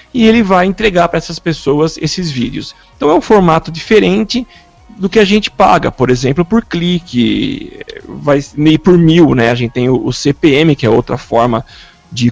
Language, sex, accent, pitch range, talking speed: Portuguese, male, Brazilian, 140-195 Hz, 185 wpm